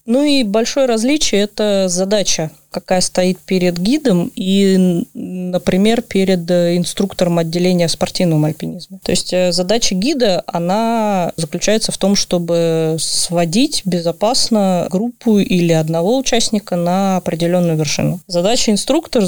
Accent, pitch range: native, 180-205 Hz